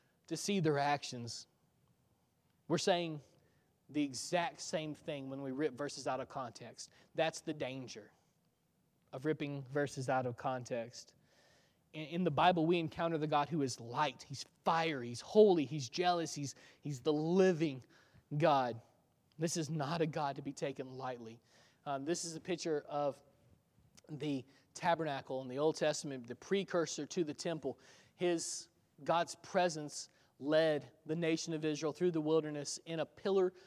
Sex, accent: male, American